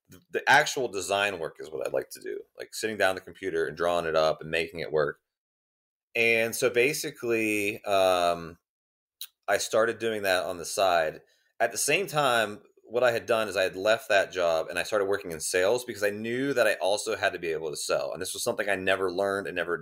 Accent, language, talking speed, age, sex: American, English, 230 wpm, 30-49, male